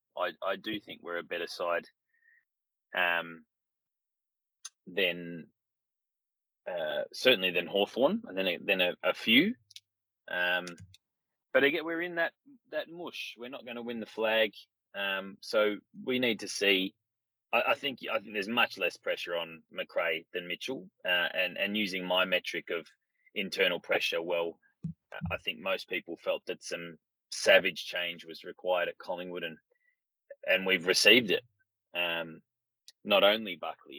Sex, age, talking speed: male, 20-39, 155 wpm